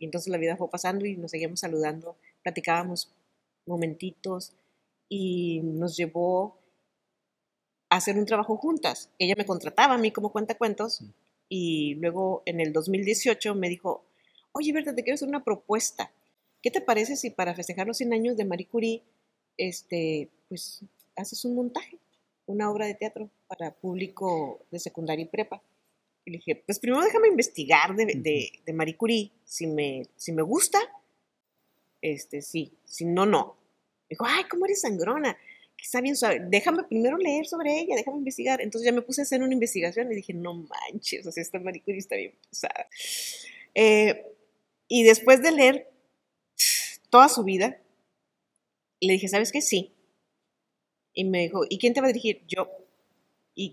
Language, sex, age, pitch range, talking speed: Spanish, female, 30-49, 175-245 Hz, 170 wpm